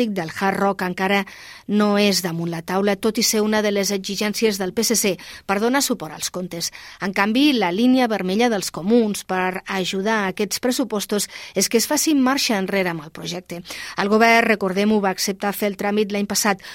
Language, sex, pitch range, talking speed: Spanish, female, 190-230 Hz, 190 wpm